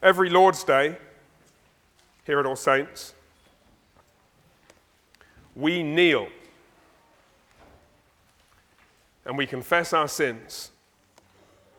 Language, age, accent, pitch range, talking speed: English, 40-59, British, 145-185 Hz, 70 wpm